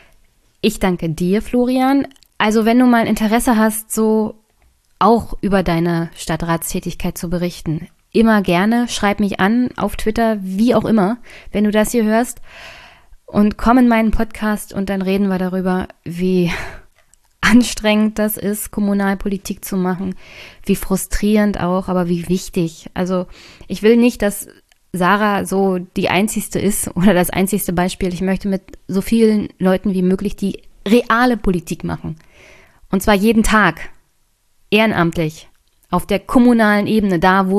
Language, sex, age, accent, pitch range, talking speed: German, female, 20-39, German, 175-215 Hz, 145 wpm